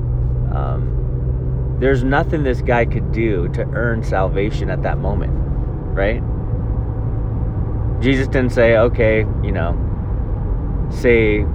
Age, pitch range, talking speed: 30-49, 80-115 Hz, 110 wpm